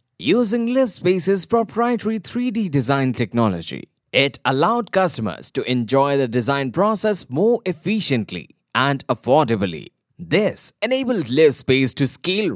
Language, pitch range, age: English, 125-205 Hz, 20-39